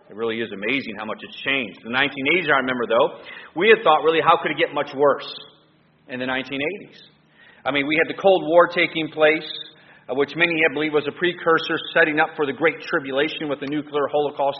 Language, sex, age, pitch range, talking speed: English, male, 40-59, 140-180 Hz, 215 wpm